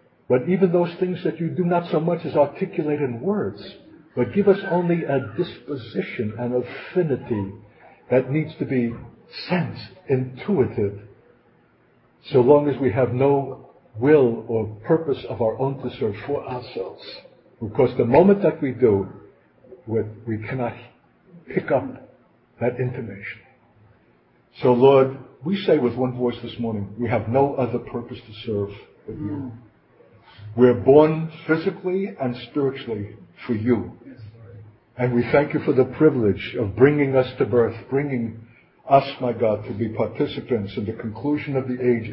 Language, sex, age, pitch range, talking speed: English, male, 60-79, 115-140 Hz, 150 wpm